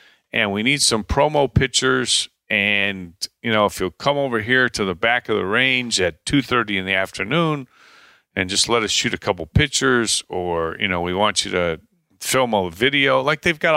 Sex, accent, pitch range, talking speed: male, American, 95-125 Hz, 200 wpm